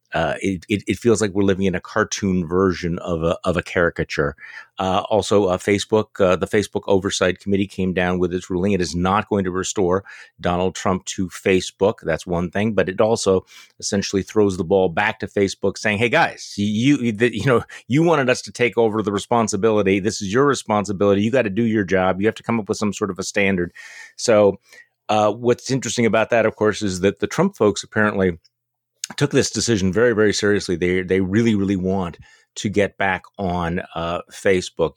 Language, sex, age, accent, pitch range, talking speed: English, male, 30-49, American, 90-105 Hz, 210 wpm